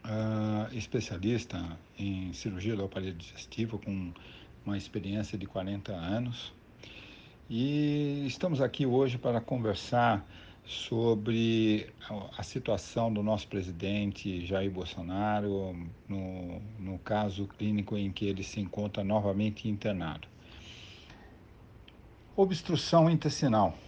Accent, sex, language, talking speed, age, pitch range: Brazilian, male, Portuguese, 105 wpm, 60-79, 100-125 Hz